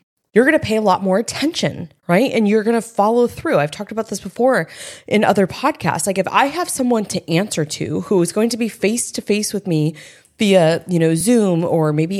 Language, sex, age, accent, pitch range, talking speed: English, female, 20-39, American, 150-200 Hz, 220 wpm